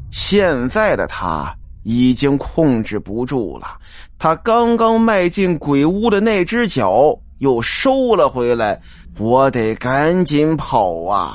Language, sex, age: Chinese, male, 20-39